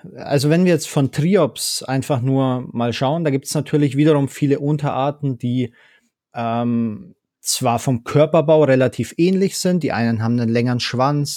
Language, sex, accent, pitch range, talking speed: German, male, German, 120-150 Hz, 165 wpm